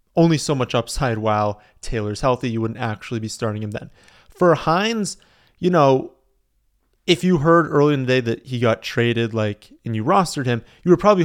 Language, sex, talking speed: English, male, 195 wpm